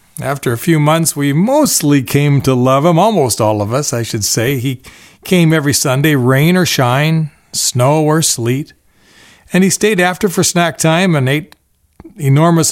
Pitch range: 120-155 Hz